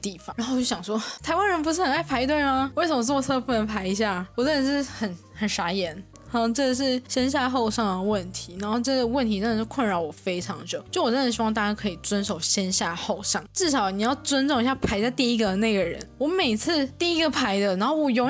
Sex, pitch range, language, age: female, 200-260 Hz, Chinese, 20-39